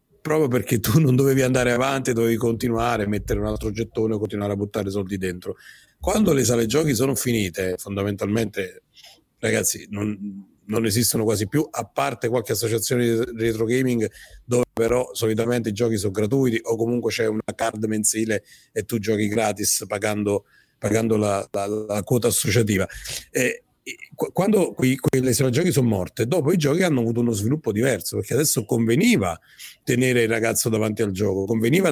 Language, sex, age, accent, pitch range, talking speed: Italian, male, 40-59, native, 105-130 Hz, 170 wpm